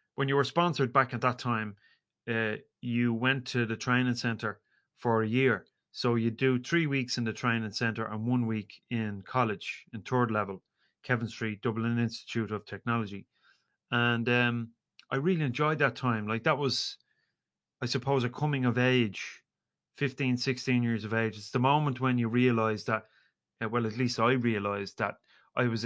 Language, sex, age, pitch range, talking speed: English, male, 30-49, 115-130 Hz, 180 wpm